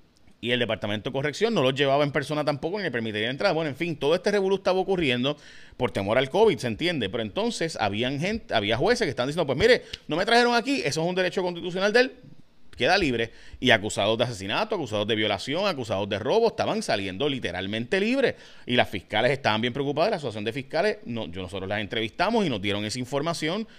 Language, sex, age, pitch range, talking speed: Spanish, male, 30-49, 120-185 Hz, 220 wpm